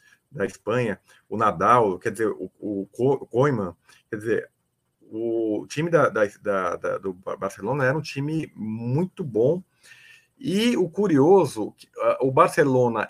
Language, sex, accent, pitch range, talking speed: Portuguese, male, Brazilian, 125-160 Hz, 130 wpm